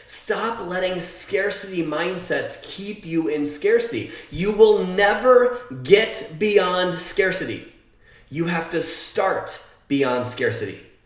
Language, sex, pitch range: English, male, 150-205 Hz